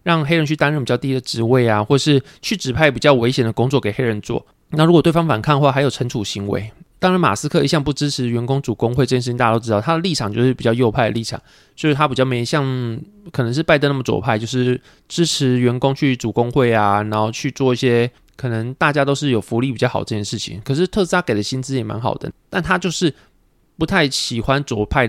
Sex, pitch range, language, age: male, 120-150 Hz, Chinese, 20-39